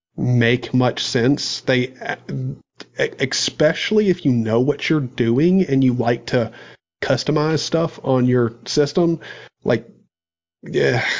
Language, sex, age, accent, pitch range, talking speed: English, male, 30-49, American, 120-135 Hz, 120 wpm